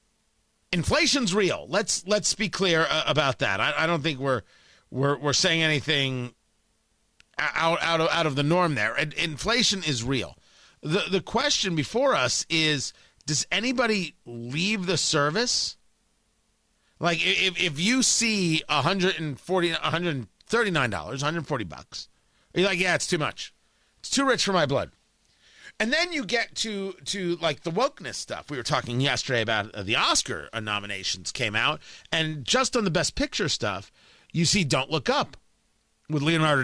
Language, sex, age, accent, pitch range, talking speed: English, male, 40-59, American, 135-185 Hz, 155 wpm